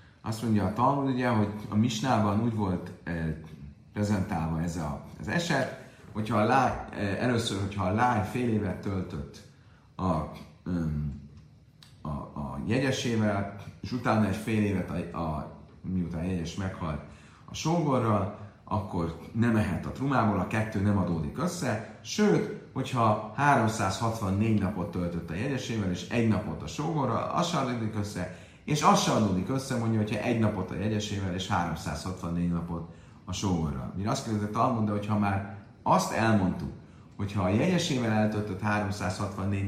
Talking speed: 145 wpm